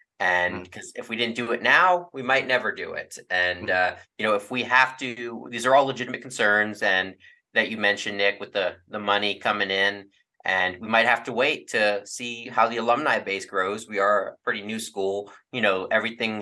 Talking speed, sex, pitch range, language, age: 215 wpm, male, 100-120 Hz, English, 30-49